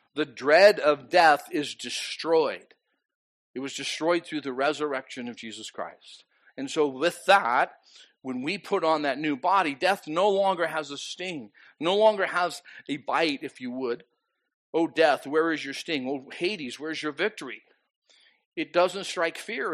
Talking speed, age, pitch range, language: 165 wpm, 50-69, 150-240 Hz, English